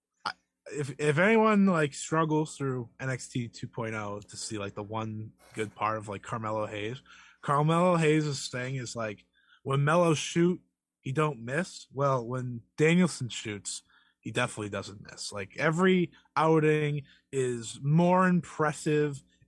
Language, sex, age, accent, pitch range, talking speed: English, male, 20-39, American, 110-150 Hz, 135 wpm